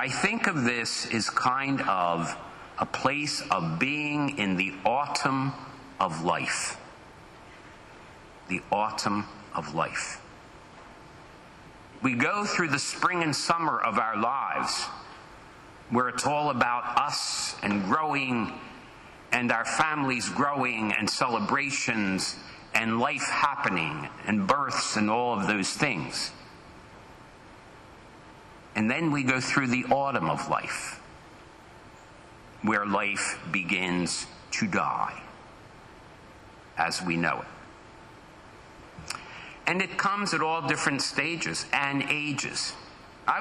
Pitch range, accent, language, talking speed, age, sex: 110-150 Hz, American, English, 110 wpm, 50-69, male